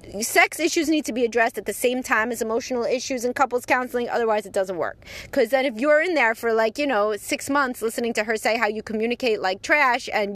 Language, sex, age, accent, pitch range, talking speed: English, female, 30-49, American, 205-270 Hz, 245 wpm